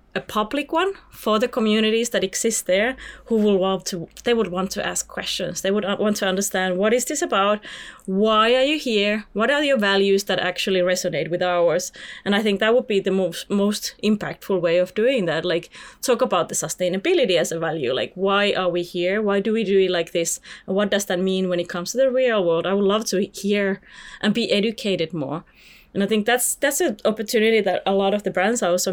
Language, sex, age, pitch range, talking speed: English, female, 30-49, 185-240 Hz, 230 wpm